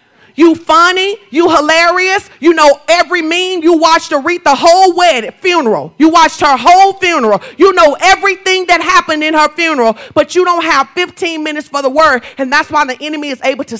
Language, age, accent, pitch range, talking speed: English, 40-59, American, 280-375 Hz, 195 wpm